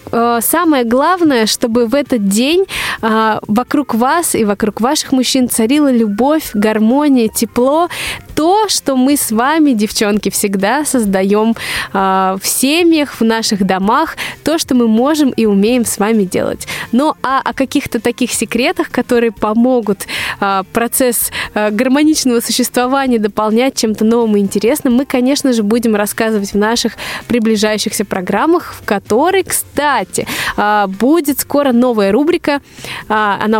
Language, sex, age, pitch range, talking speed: Russian, female, 20-39, 215-275 Hz, 130 wpm